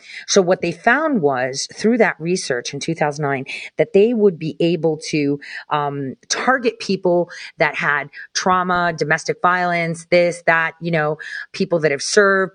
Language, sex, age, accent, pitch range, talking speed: English, female, 30-49, American, 165-225 Hz, 155 wpm